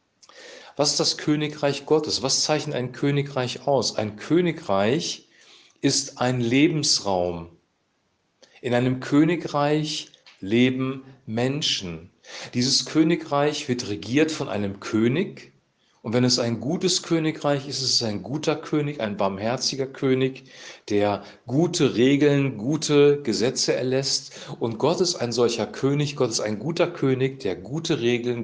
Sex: male